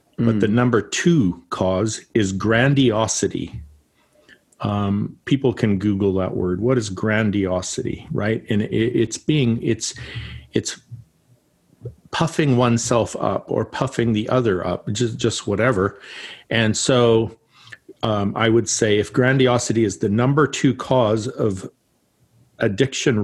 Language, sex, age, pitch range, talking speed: English, male, 50-69, 110-135 Hz, 125 wpm